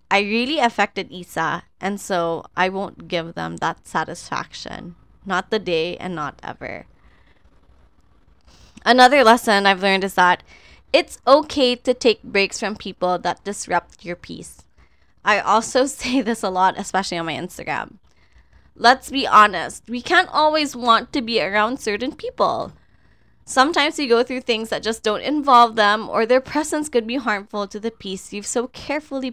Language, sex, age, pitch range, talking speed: Filipino, female, 20-39, 200-265 Hz, 160 wpm